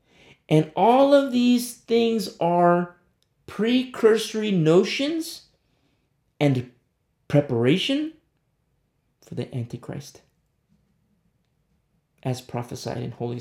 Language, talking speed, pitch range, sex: English, 75 wpm, 115-160 Hz, male